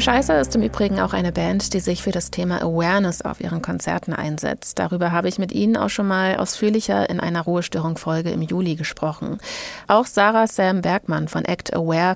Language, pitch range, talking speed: German, 165-215 Hz, 195 wpm